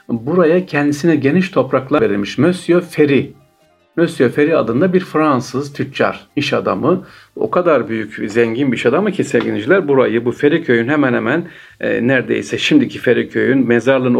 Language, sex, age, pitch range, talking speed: Turkish, male, 50-69, 120-160 Hz, 150 wpm